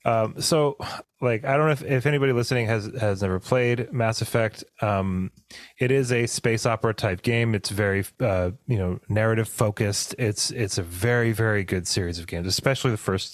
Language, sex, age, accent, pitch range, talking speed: English, male, 30-49, American, 95-125 Hz, 195 wpm